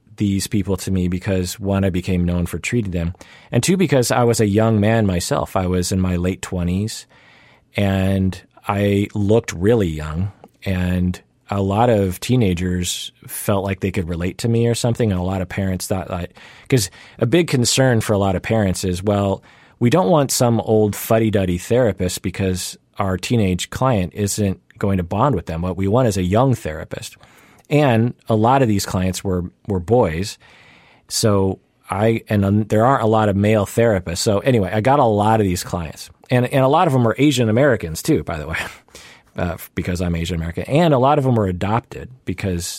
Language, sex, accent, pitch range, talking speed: English, male, American, 90-115 Hz, 200 wpm